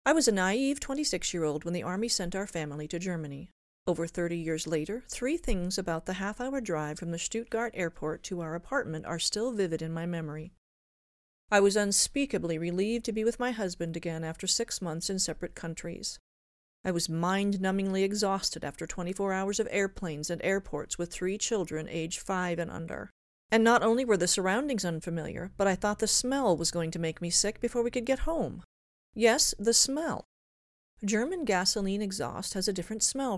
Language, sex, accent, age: English, female, American, 40-59